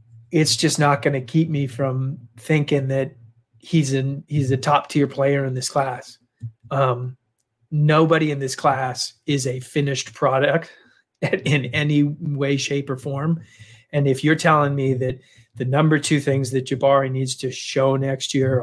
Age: 30-49